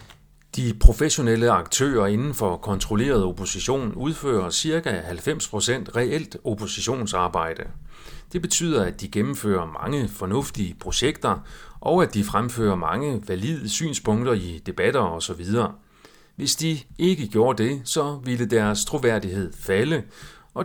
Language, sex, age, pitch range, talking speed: Danish, male, 40-59, 95-145 Hz, 120 wpm